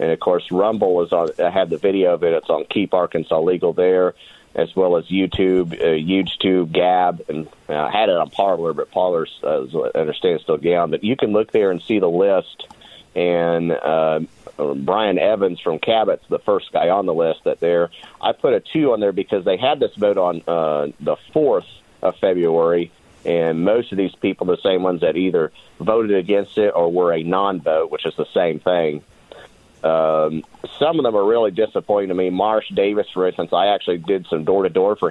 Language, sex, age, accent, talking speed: English, male, 40-59, American, 195 wpm